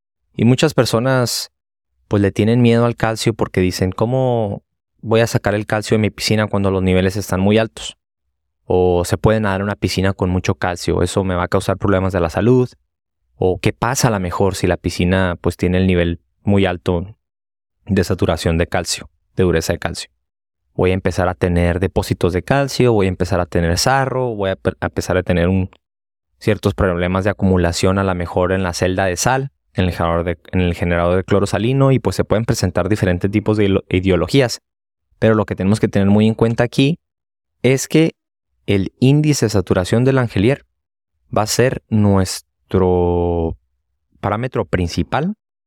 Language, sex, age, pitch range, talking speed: Spanish, male, 20-39, 90-110 Hz, 185 wpm